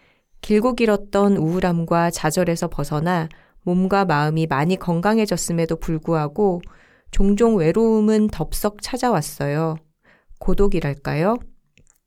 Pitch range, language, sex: 165-225 Hz, Korean, female